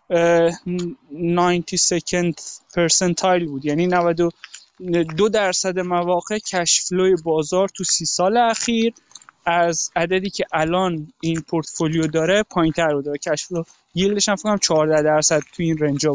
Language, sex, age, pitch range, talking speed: Persian, male, 20-39, 165-195 Hz, 125 wpm